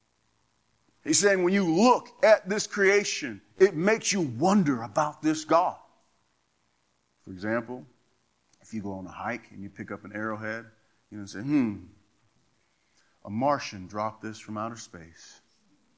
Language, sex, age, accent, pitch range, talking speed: English, male, 40-59, American, 100-160 Hz, 150 wpm